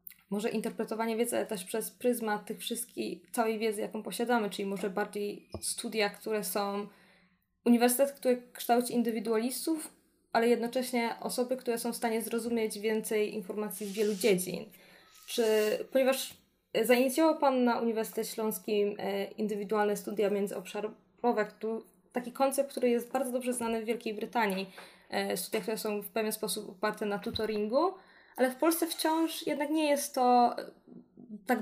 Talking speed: 140 wpm